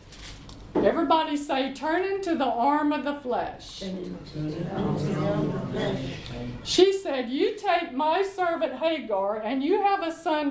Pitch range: 265-365 Hz